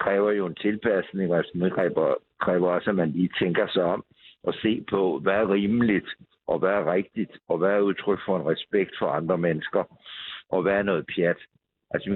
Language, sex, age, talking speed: Danish, male, 60-79, 205 wpm